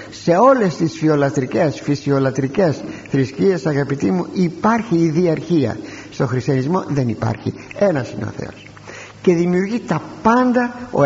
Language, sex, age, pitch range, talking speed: Greek, male, 60-79, 125-190 Hz, 130 wpm